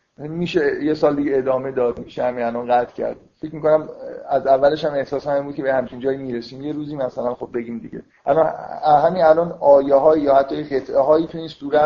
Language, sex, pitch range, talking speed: Persian, male, 125-150 Hz, 195 wpm